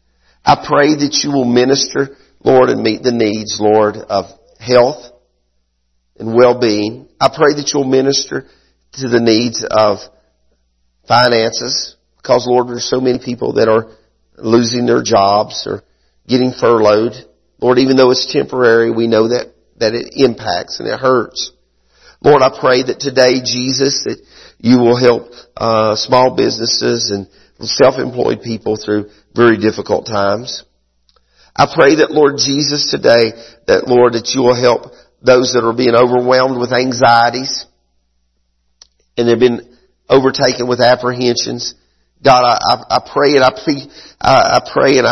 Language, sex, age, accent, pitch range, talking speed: English, male, 50-69, American, 105-130 Hz, 150 wpm